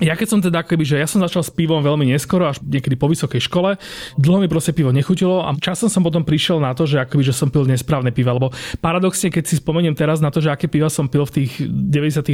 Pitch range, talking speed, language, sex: 135-175 Hz, 260 wpm, Slovak, male